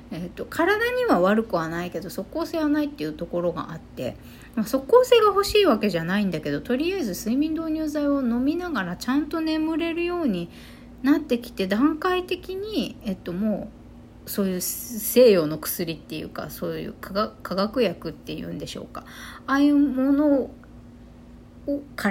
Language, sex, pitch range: Japanese, female, 205-310 Hz